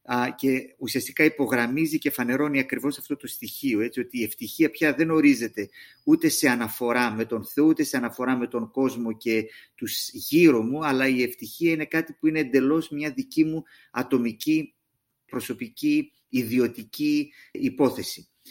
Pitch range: 120-165 Hz